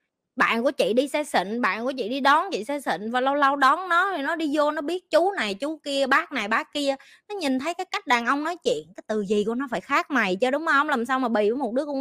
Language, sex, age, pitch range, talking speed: Vietnamese, female, 20-39, 225-295 Hz, 305 wpm